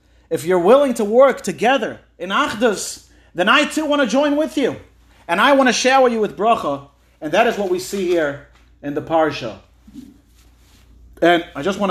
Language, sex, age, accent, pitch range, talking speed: English, male, 40-59, American, 140-200 Hz, 190 wpm